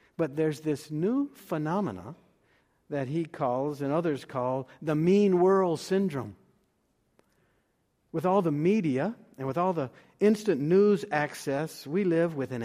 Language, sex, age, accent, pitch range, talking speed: English, male, 60-79, American, 135-185 Hz, 140 wpm